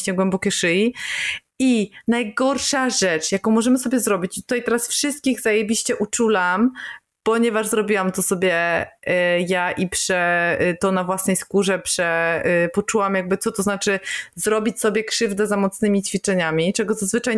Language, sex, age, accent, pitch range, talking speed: Polish, female, 20-39, native, 190-225 Hz, 140 wpm